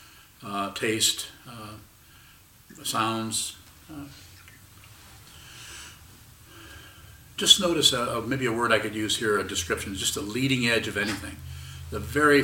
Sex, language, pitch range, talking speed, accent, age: male, English, 100-125 Hz, 120 wpm, American, 50-69